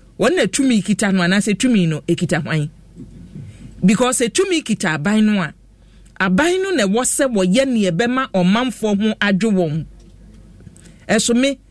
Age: 40-59